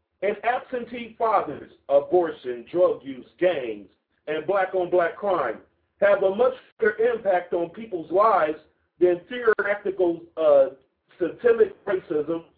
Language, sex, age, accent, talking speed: English, male, 50-69, American, 110 wpm